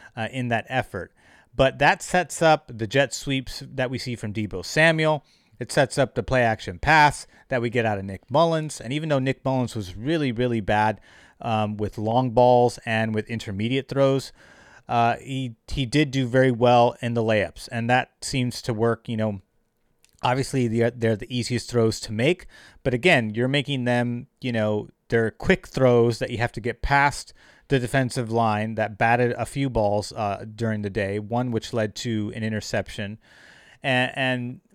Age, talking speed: 30-49, 190 wpm